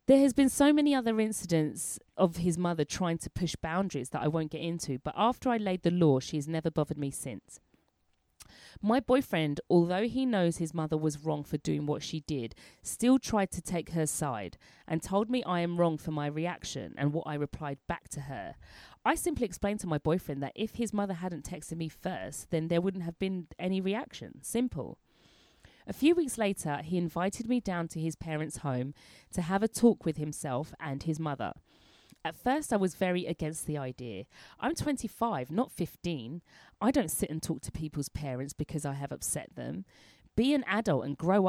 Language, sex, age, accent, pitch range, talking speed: English, female, 30-49, British, 150-200 Hz, 205 wpm